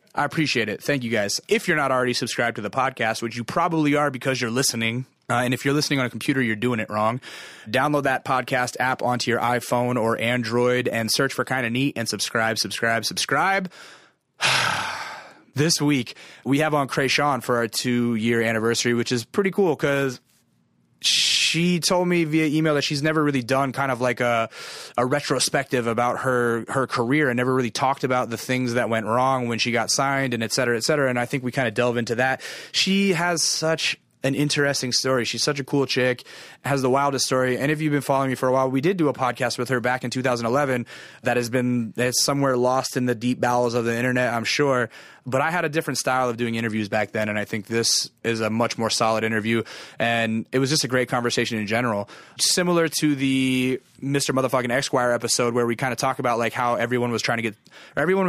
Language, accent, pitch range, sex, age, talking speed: English, American, 120-140 Hz, male, 30-49, 220 wpm